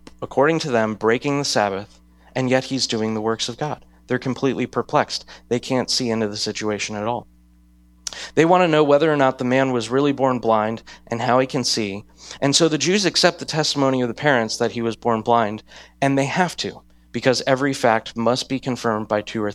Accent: American